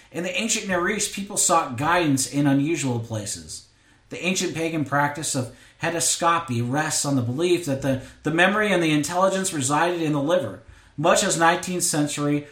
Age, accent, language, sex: 40-59, American, English, male